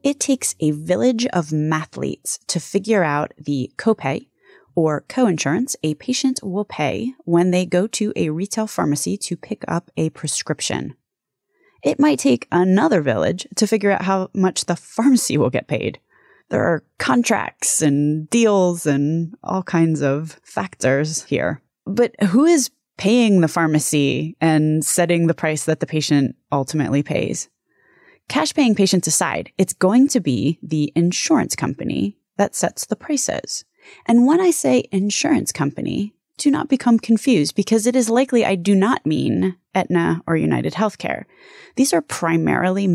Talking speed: 155 wpm